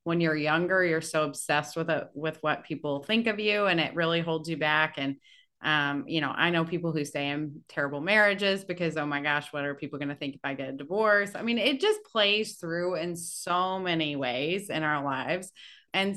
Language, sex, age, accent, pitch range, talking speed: English, female, 30-49, American, 155-195 Hz, 225 wpm